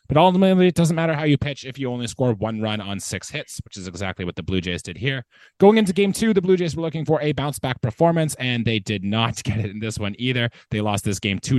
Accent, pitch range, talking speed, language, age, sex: American, 100-125 Hz, 280 wpm, English, 20-39, male